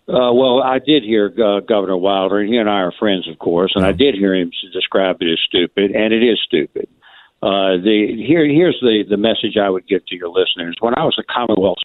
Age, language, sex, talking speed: 60-79, English, male, 240 wpm